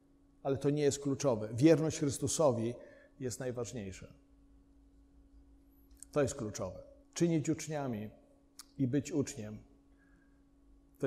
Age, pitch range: 50-69, 120-150 Hz